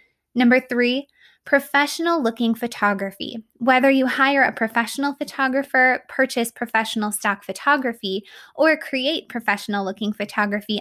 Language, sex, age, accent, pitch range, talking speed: English, female, 20-39, American, 215-265 Hz, 110 wpm